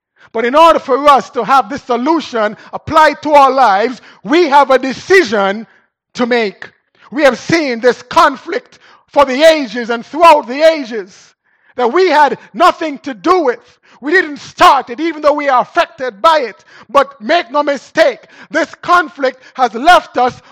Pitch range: 190-285 Hz